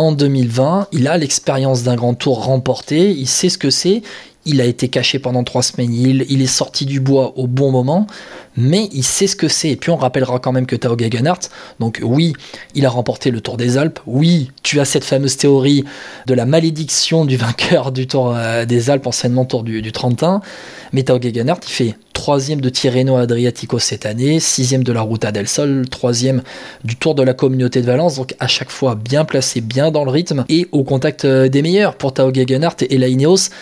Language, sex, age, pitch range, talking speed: French, male, 20-39, 125-150 Hz, 210 wpm